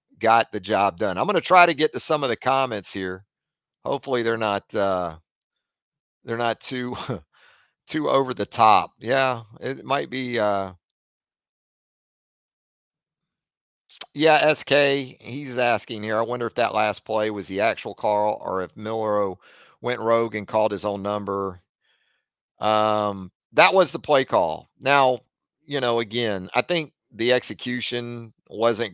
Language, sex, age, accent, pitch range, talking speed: English, male, 40-59, American, 100-125 Hz, 150 wpm